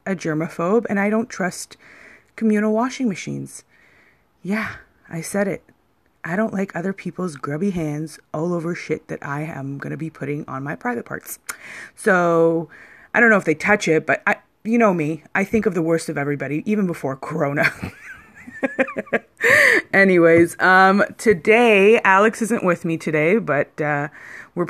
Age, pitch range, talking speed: 30-49, 155-210 Hz, 165 wpm